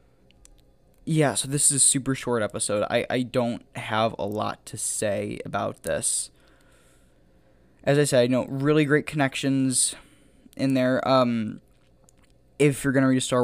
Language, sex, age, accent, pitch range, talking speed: English, male, 10-29, American, 115-130 Hz, 165 wpm